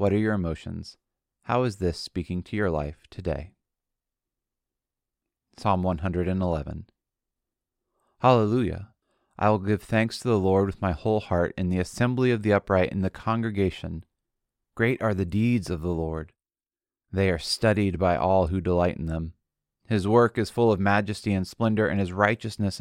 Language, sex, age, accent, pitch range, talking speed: English, male, 30-49, American, 90-110 Hz, 165 wpm